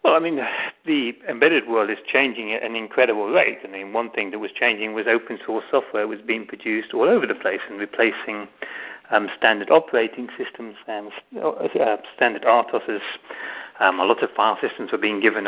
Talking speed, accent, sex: 190 wpm, British, male